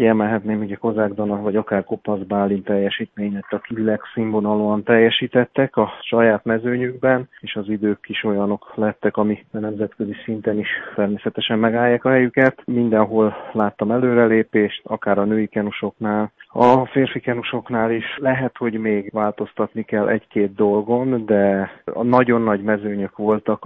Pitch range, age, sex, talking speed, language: 105-115 Hz, 30-49, male, 135 wpm, Hungarian